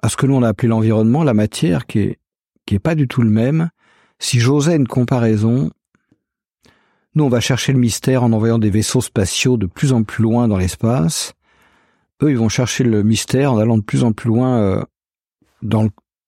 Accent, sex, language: French, male, French